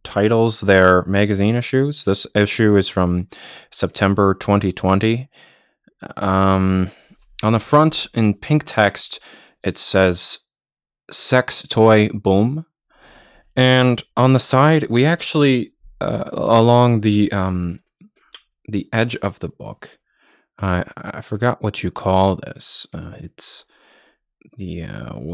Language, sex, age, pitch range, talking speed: English, male, 20-39, 90-110 Hz, 115 wpm